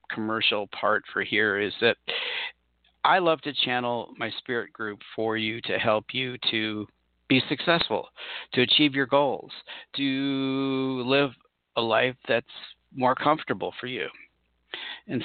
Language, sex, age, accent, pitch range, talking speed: English, male, 50-69, American, 100-125 Hz, 140 wpm